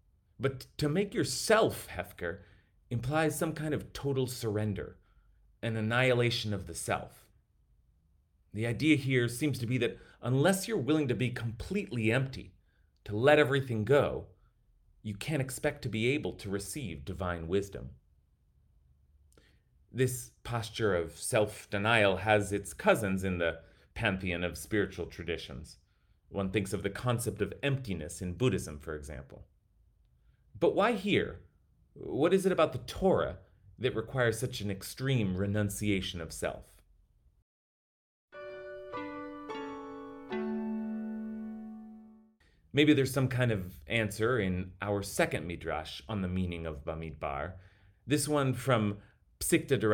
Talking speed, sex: 125 wpm, male